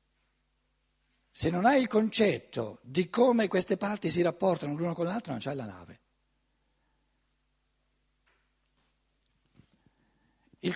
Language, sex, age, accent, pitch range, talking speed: Italian, male, 60-79, native, 125-185 Hz, 105 wpm